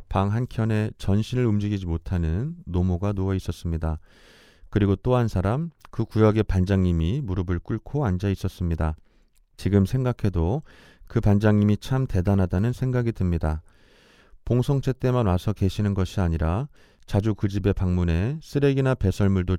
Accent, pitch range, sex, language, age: native, 85-115 Hz, male, Korean, 30-49